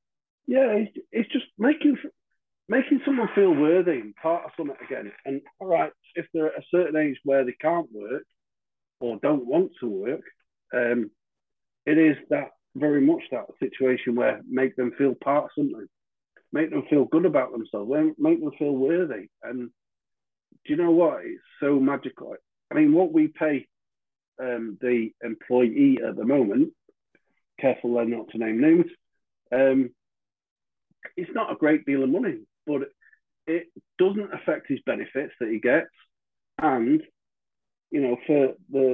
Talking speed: 155 wpm